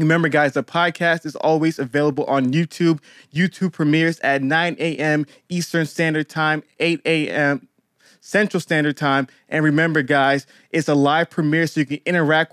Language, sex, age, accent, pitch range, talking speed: English, male, 20-39, American, 135-160 Hz, 160 wpm